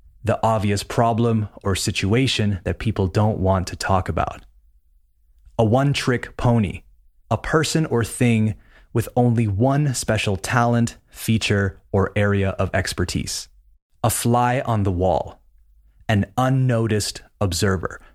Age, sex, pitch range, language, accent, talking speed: 20-39, male, 85-115 Hz, Spanish, American, 120 wpm